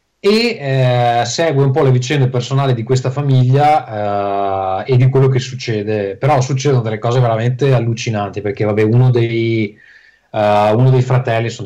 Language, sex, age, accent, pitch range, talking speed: Italian, male, 20-39, native, 110-130 Hz, 165 wpm